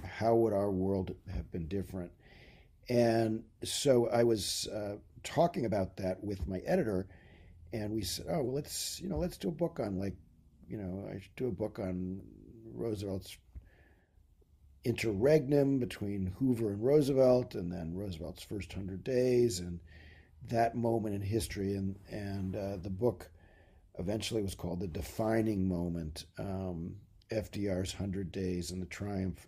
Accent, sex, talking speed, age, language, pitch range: American, male, 155 wpm, 50-69, English, 90-115 Hz